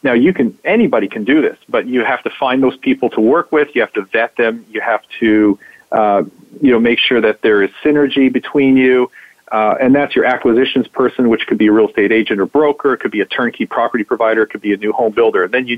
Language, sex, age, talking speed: English, male, 40-59, 260 wpm